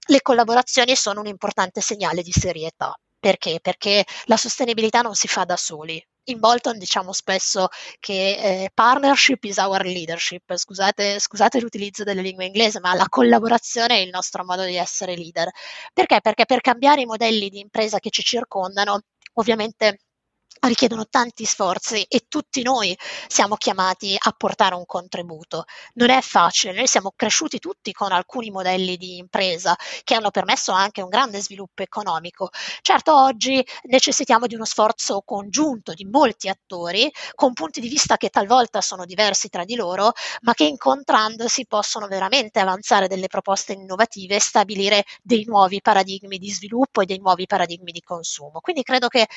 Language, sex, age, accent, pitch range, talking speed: Italian, female, 20-39, native, 185-235 Hz, 160 wpm